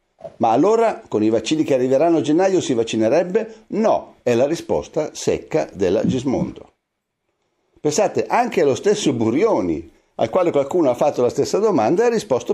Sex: male